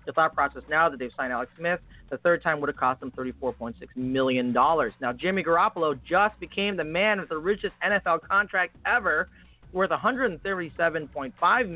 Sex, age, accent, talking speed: male, 30-49, American, 170 wpm